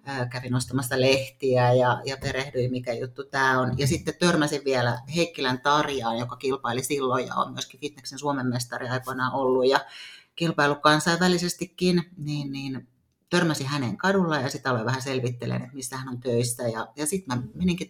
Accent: native